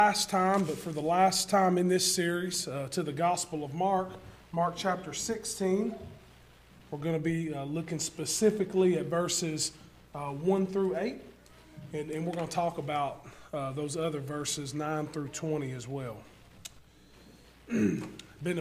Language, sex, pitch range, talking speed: English, male, 140-185 Hz, 155 wpm